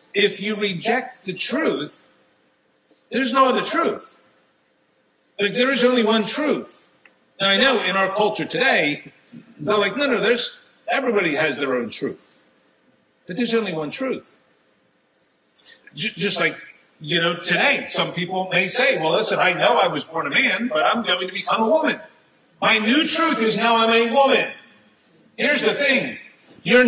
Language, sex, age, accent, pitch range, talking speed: English, male, 50-69, American, 185-250 Hz, 165 wpm